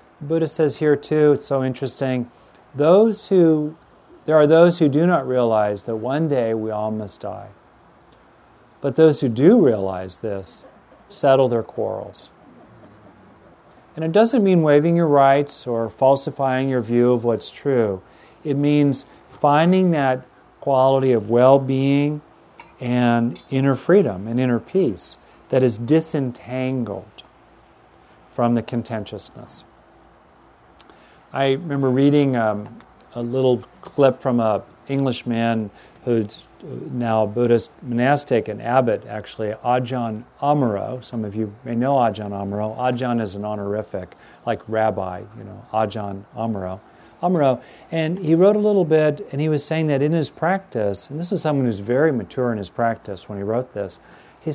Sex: male